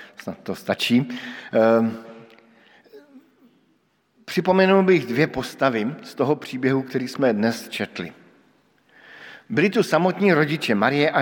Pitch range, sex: 130-165 Hz, male